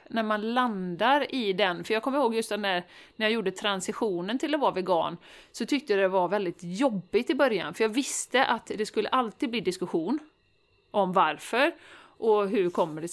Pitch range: 190-260 Hz